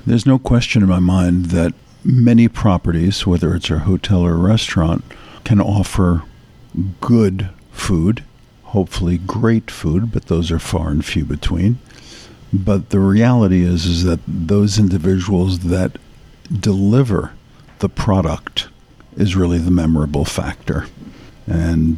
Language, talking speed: English, 130 wpm